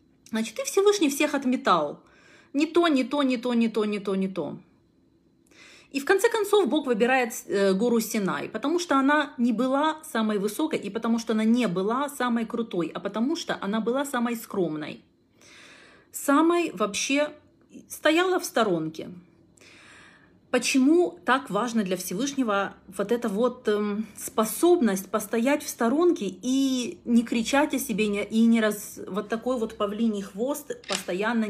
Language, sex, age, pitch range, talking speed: Russian, female, 30-49, 210-285 Hz, 150 wpm